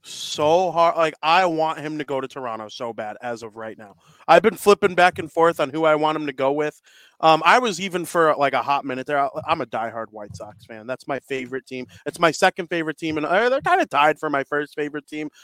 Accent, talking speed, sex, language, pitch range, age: American, 255 wpm, male, English, 130-160 Hz, 30-49